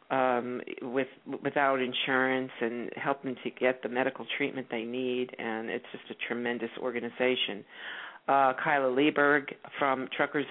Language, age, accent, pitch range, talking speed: English, 50-69, American, 125-140 Hz, 135 wpm